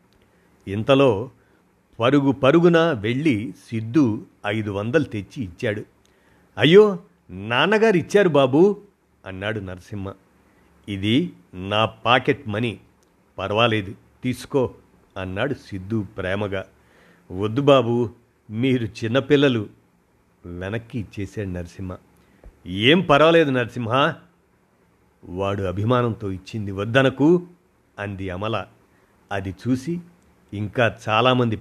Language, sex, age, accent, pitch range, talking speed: Telugu, male, 50-69, native, 100-135 Hz, 80 wpm